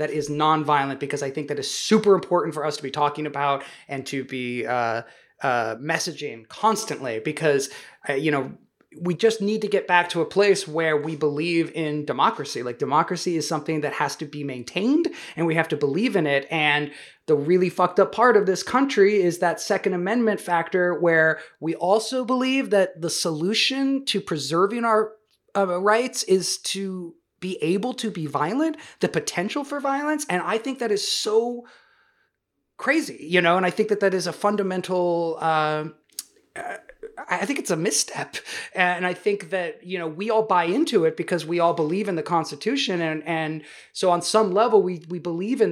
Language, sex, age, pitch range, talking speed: English, male, 20-39, 160-210 Hz, 190 wpm